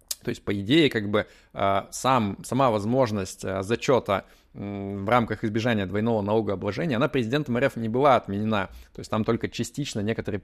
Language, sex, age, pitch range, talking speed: Russian, male, 20-39, 105-120 Hz, 150 wpm